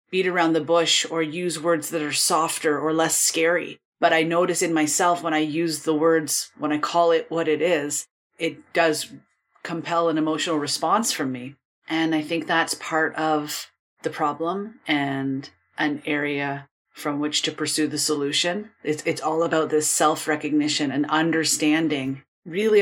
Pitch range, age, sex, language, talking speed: 150-175 Hz, 30-49, female, English, 170 wpm